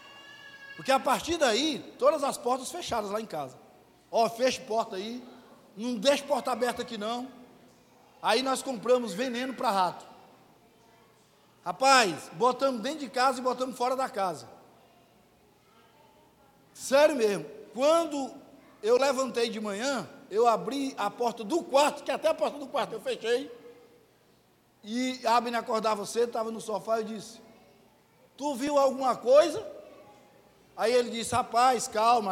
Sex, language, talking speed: male, Portuguese, 150 wpm